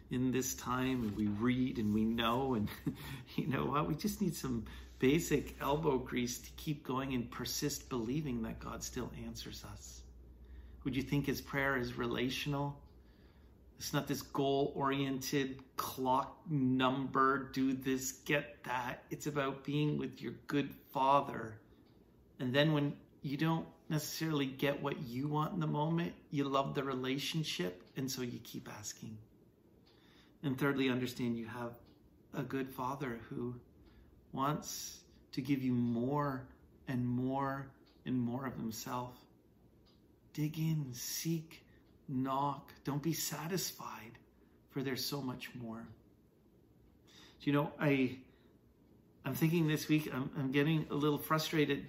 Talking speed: 145 wpm